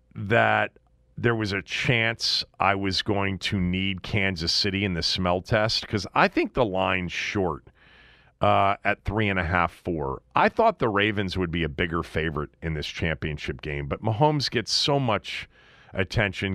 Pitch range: 90-115 Hz